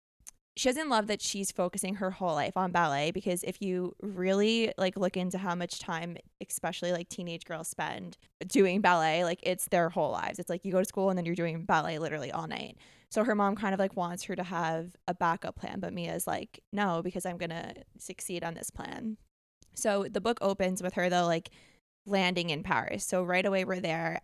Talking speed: 215 wpm